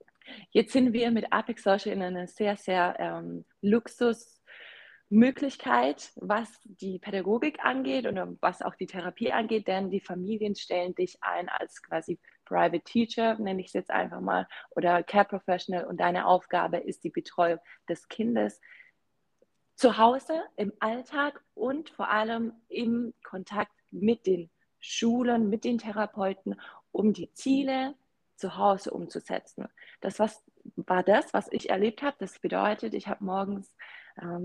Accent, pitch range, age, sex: German, 185-240 Hz, 20-39, female